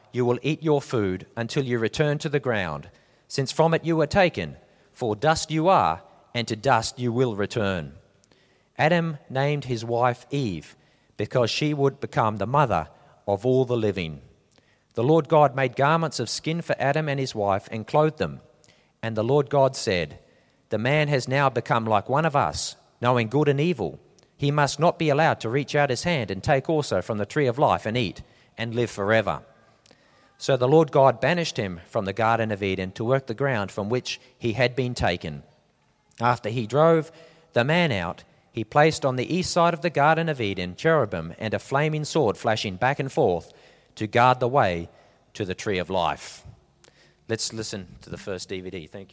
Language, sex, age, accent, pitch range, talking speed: English, male, 40-59, Australian, 105-145 Hz, 195 wpm